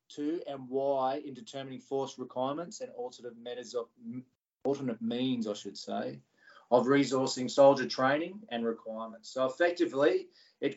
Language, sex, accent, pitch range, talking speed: English, male, Australian, 120-145 Hz, 140 wpm